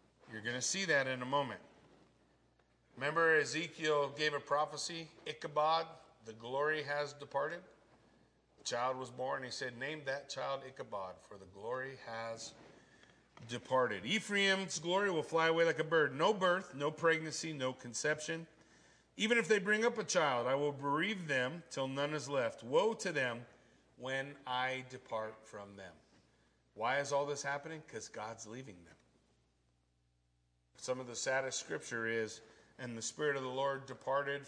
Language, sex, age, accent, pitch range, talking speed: English, male, 40-59, American, 120-155 Hz, 160 wpm